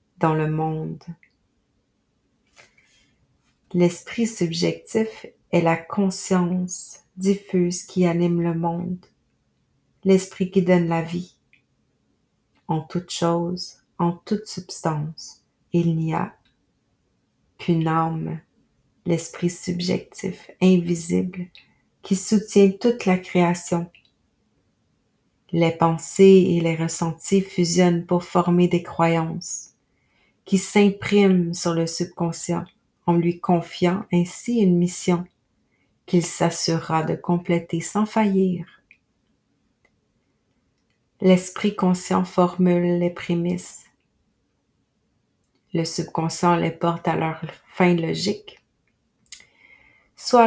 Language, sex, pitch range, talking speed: French, female, 170-185 Hz, 95 wpm